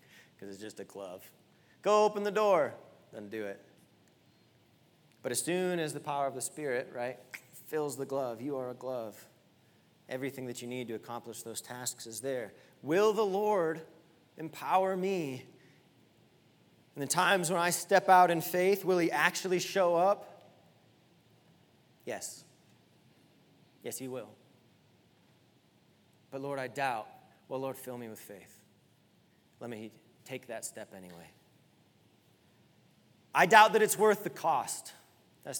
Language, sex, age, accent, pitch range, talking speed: English, male, 30-49, American, 125-170 Hz, 145 wpm